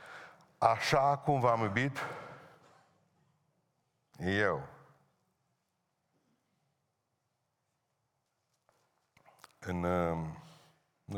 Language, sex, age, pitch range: Romanian, male, 50-69, 85-110 Hz